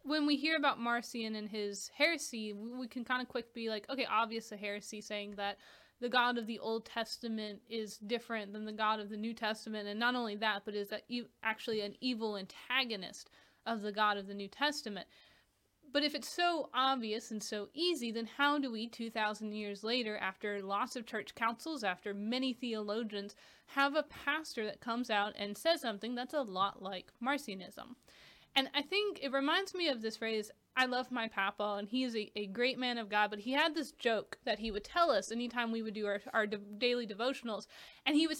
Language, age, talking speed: English, 20-39, 210 wpm